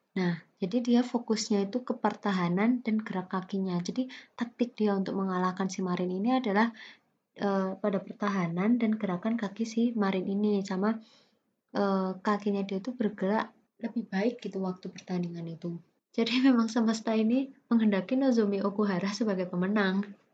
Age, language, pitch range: 20-39, Indonesian, 190-235 Hz